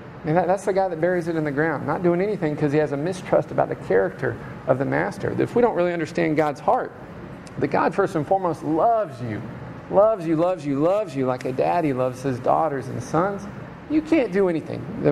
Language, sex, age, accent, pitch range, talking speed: English, male, 40-59, American, 145-190 Hz, 230 wpm